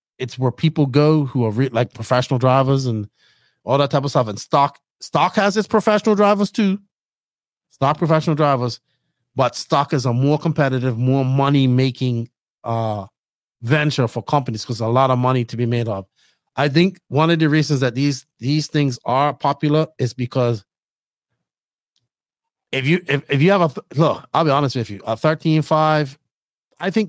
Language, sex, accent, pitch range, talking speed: English, male, American, 125-155 Hz, 180 wpm